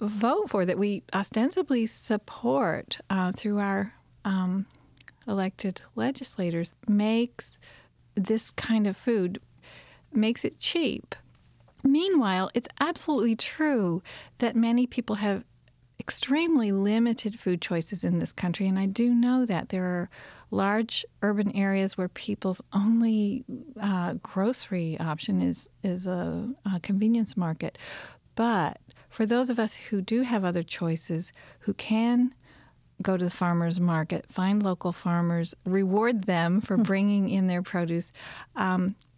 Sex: female